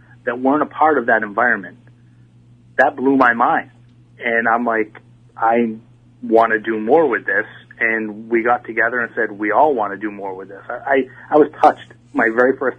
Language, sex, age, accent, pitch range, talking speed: English, male, 40-59, American, 115-130 Hz, 200 wpm